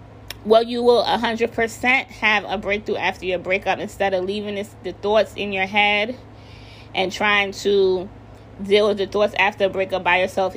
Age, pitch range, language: 20-39, 175-220 Hz, English